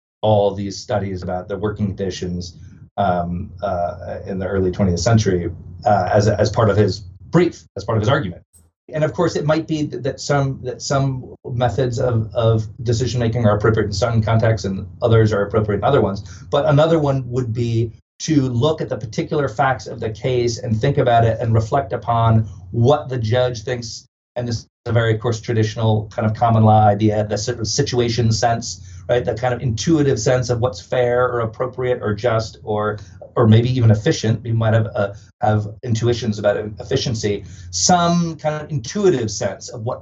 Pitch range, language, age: 105-125 Hz, English, 40-59